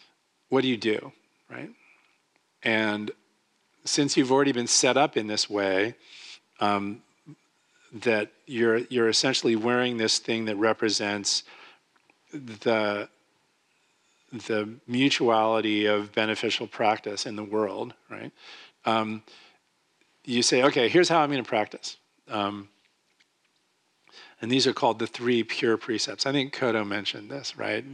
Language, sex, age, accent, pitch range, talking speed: English, male, 40-59, American, 105-120 Hz, 130 wpm